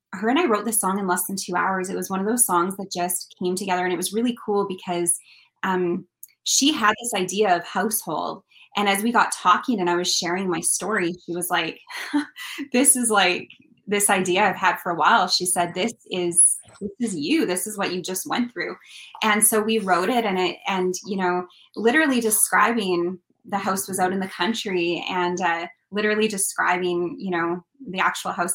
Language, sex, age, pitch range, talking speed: English, female, 20-39, 180-210 Hz, 210 wpm